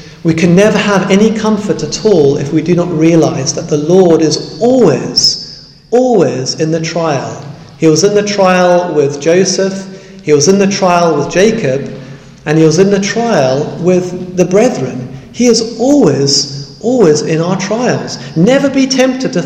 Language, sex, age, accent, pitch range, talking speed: English, male, 40-59, British, 145-195 Hz, 175 wpm